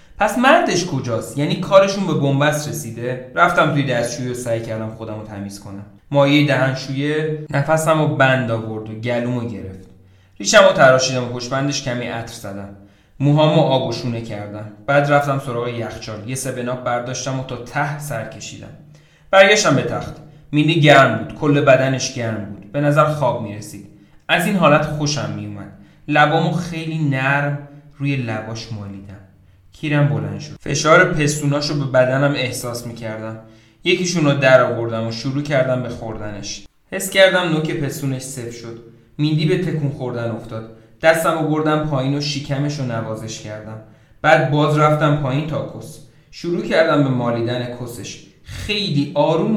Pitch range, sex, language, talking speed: 115-155 Hz, male, Persian, 155 wpm